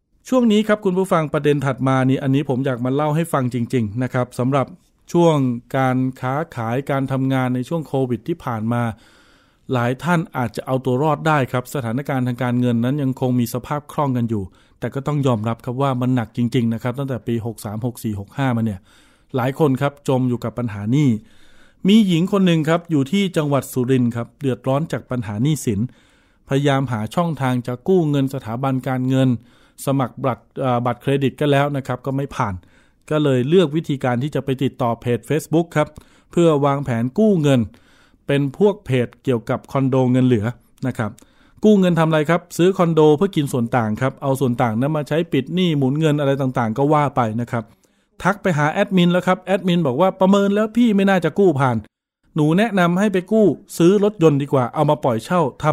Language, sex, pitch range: Thai, male, 125-160 Hz